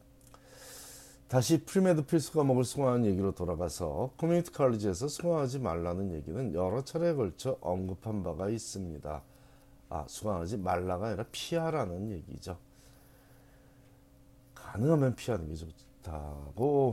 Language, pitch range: Korean, 95-135 Hz